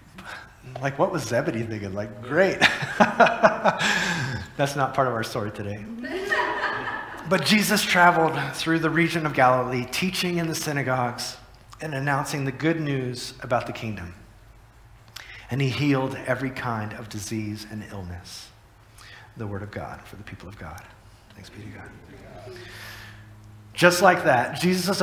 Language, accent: English, American